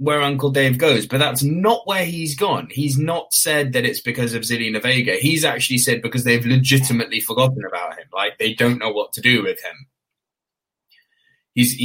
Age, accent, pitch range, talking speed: 20-39, British, 130-165 Hz, 190 wpm